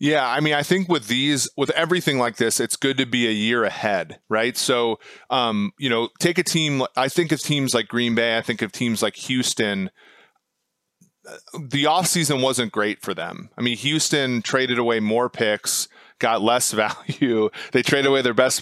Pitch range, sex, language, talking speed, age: 115-140 Hz, male, English, 195 wpm, 30-49